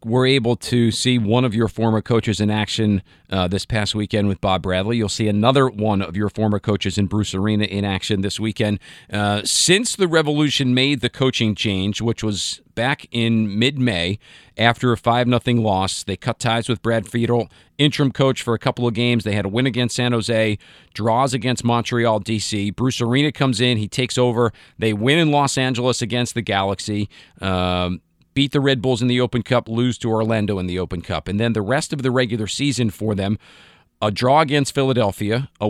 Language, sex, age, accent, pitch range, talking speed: English, male, 50-69, American, 105-125 Hz, 205 wpm